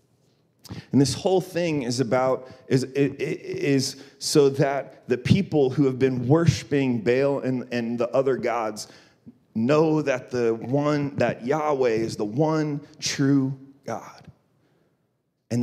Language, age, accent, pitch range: English, 30-49, American, 120-145 Hz